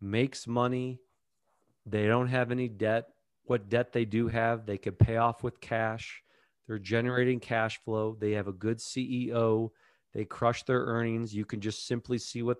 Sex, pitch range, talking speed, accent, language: male, 110-125 Hz, 175 wpm, American, English